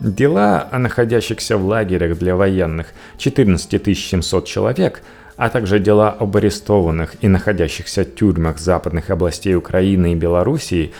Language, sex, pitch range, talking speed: Russian, male, 85-110 Hz, 125 wpm